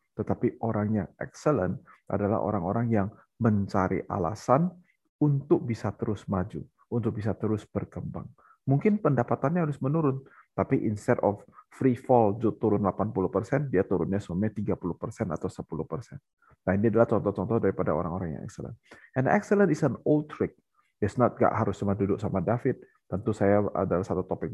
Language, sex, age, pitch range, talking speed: Indonesian, male, 30-49, 95-120 Hz, 145 wpm